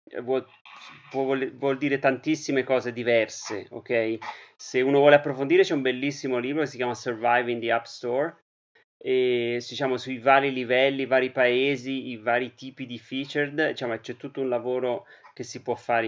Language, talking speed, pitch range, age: Italian, 170 wpm, 115-140 Hz, 30-49